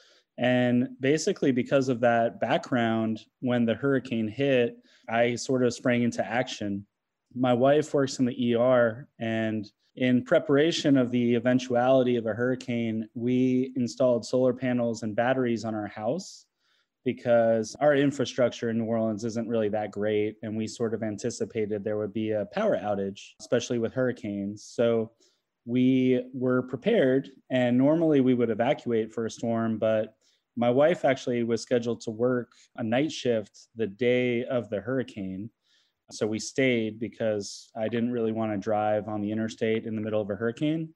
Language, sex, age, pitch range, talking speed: English, male, 20-39, 110-125 Hz, 165 wpm